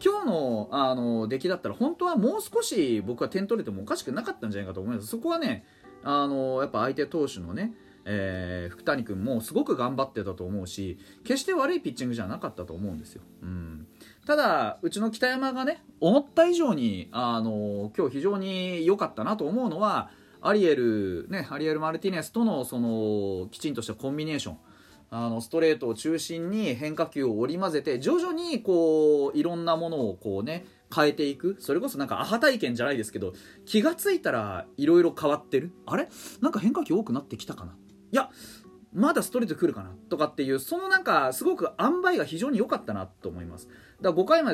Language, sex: Japanese, male